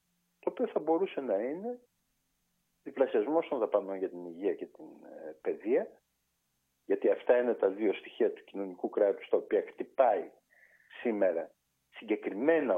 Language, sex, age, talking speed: Greek, male, 50-69, 135 wpm